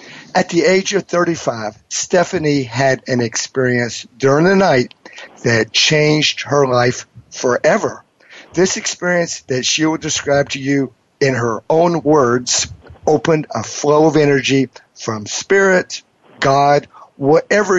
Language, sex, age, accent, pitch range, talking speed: English, male, 50-69, American, 125-160 Hz, 130 wpm